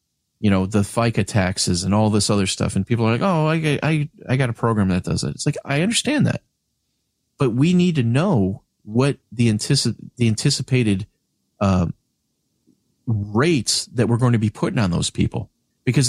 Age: 40-59